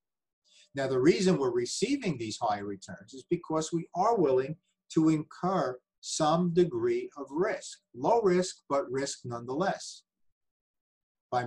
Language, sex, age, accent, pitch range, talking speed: English, male, 50-69, American, 135-185 Hz, 130 wpm